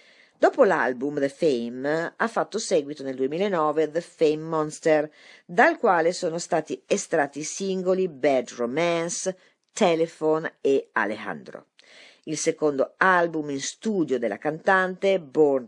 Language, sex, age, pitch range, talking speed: Italian, female, 50-69, 135-195 Hz, 125 wpm